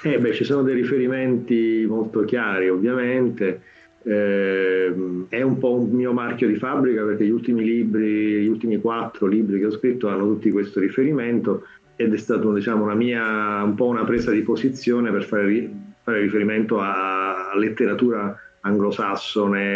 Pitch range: 100-115 Hz